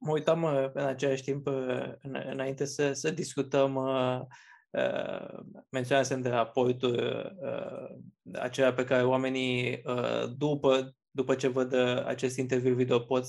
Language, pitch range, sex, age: Romanian, 130-145 Hz, male, 20-39